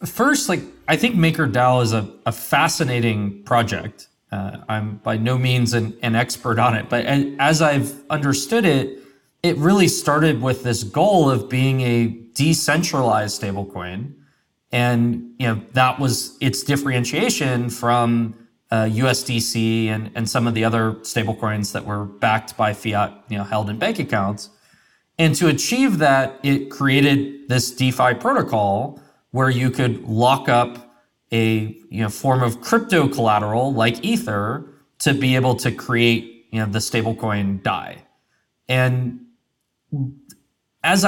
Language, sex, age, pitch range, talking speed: English, male, 20-39, 115-140 Hz, 145 wpm